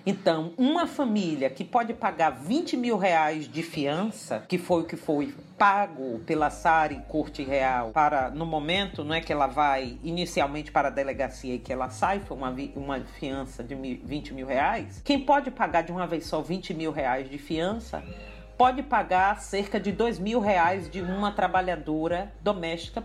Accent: Brazilian